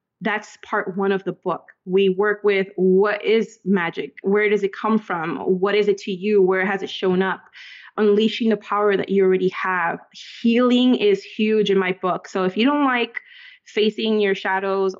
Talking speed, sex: 190 wpm, female